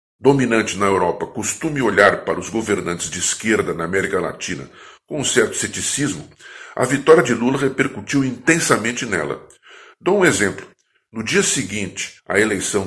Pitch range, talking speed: 105-135 Hz, 150 wpm